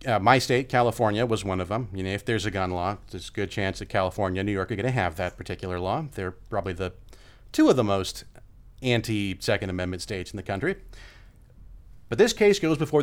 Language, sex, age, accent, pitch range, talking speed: English, male, 40-59, American, 100-135 Hz, 225 wpm